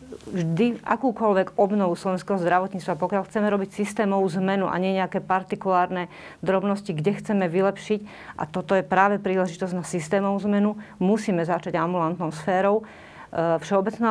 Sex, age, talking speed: female, 40-59, 130 wpm